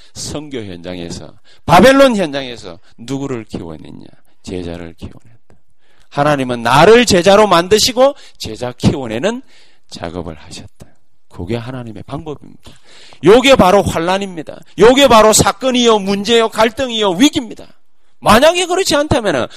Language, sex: Korean, male